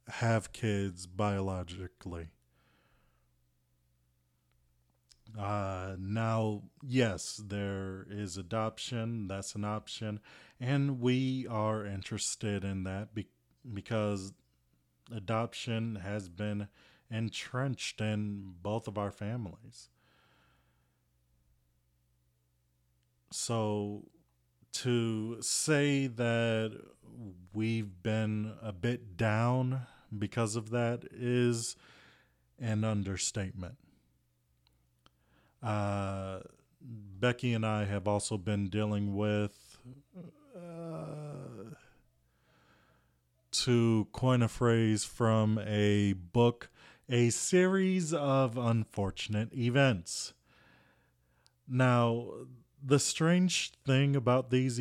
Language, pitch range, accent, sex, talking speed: English, 95-120 Hz, American, male, 80 wpm